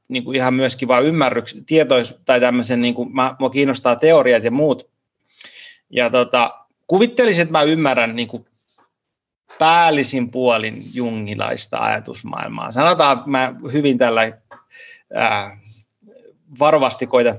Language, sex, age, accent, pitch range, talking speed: Finnish, male, 30-49, native, 125-160 Hz, 105 wpm